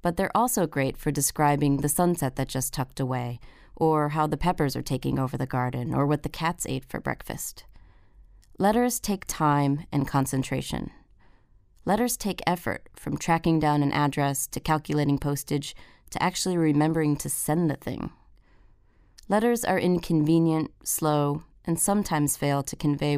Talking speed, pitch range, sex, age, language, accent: 155 wpm, 135-165 Hz, female, 30-49, English, American